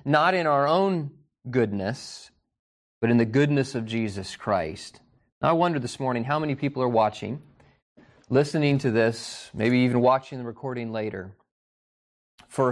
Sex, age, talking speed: male, 30-49, 150 wpm